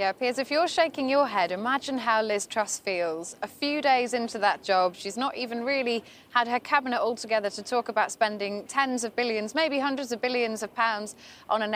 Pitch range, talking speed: 205-265 Hz, 210 wpm